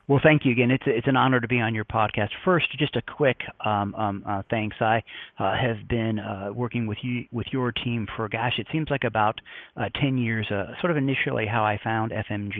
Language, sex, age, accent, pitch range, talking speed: English, male, 40-59, American, 105-130 Hz, 235 wpm